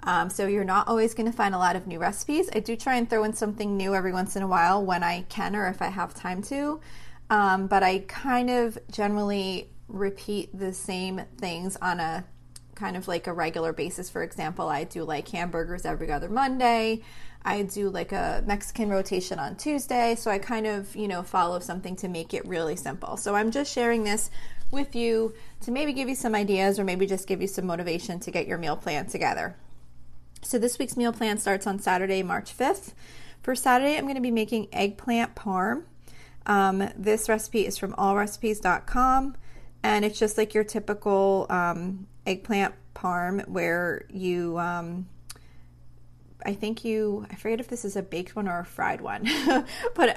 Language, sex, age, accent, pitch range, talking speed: English, female, 30-49, American, 180-225 Hz, 195 wpm